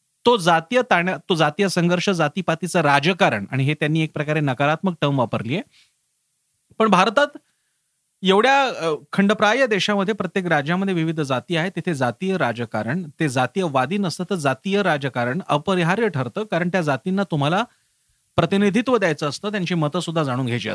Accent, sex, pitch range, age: native, male, 145-195 Hz, 40-59